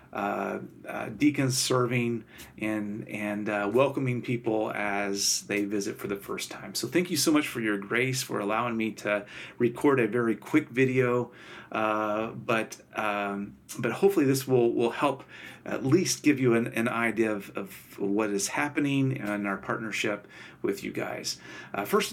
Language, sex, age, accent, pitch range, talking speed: English, male, 40-59, American, 105-135 Hz, 170 wpm